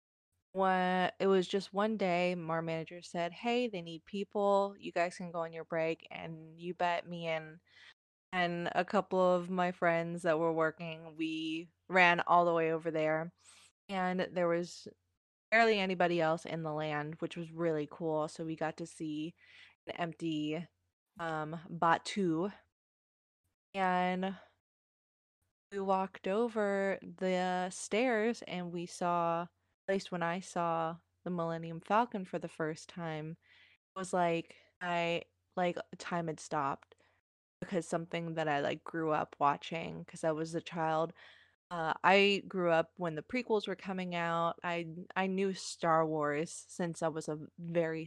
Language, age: English, 20-39